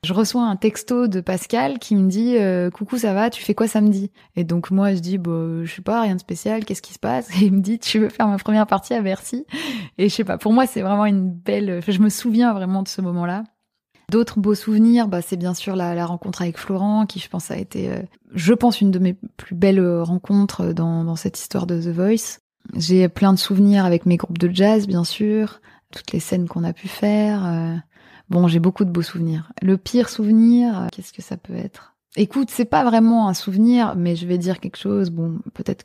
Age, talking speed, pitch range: 20-39, 250 wpm, 180-215 Hz